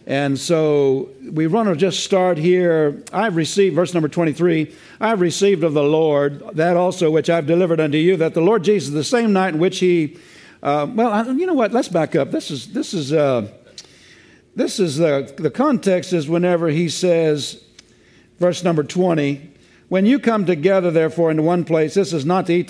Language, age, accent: English, 60-79, American